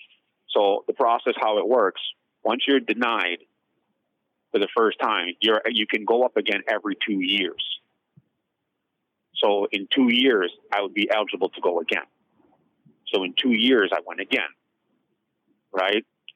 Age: 40-59